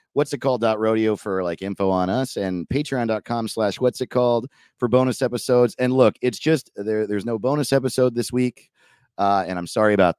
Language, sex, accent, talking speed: English, male, American, 205 wpm